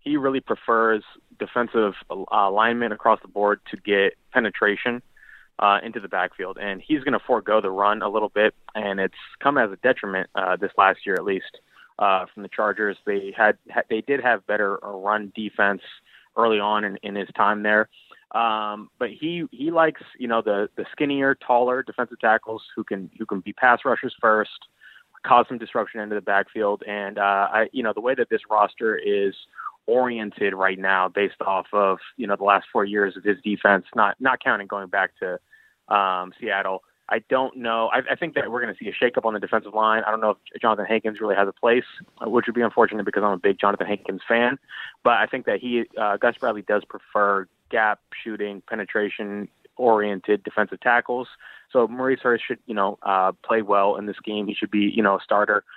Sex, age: male, 20-39